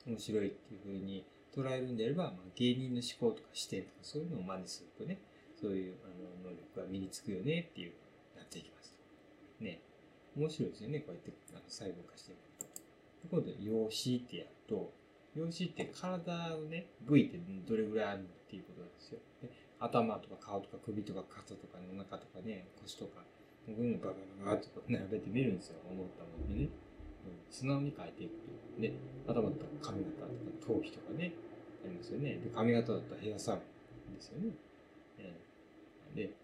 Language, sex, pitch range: Japanese, male, 95-145 Hz